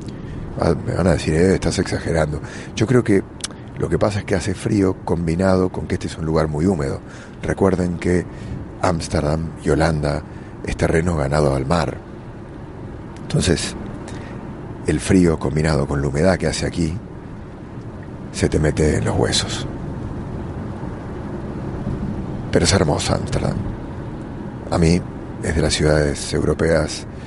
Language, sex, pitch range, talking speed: English, male, 80-95 Hz, 140 wpm